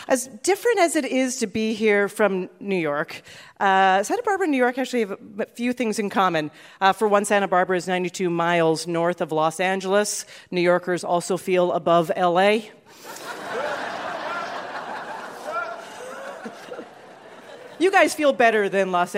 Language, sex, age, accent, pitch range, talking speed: English, female, 40-59, American, 185-250 Hz, 150 wpm